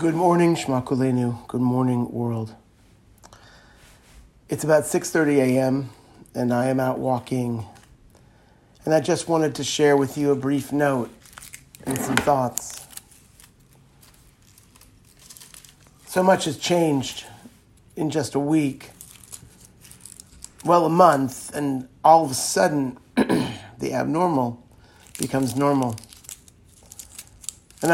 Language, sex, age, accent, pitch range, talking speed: English, male, 50-69, American, 120-155 Hz, 105 wpm